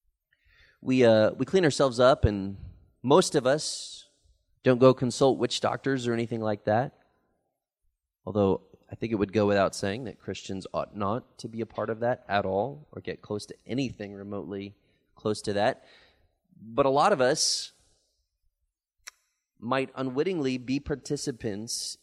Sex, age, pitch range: male, 30-49, 100-135 Hz